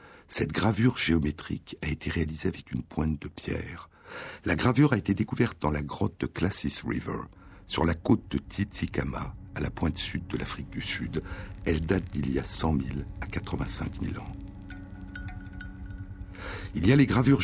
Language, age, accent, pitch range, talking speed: French, 60-79, French, 80-100 Hz, 175 wpm